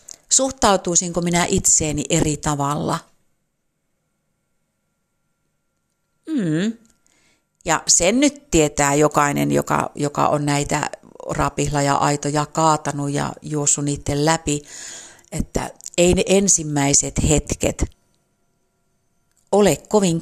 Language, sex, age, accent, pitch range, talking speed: Finnish, female, 50-69, native, 145-190 Hz, 90 wpm